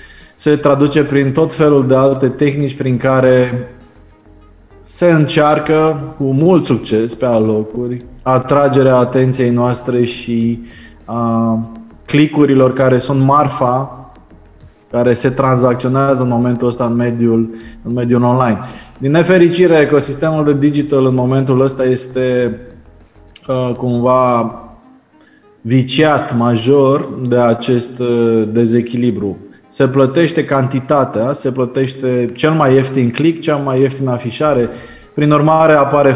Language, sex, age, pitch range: Romanian, male, 20-39, 120-140 Hz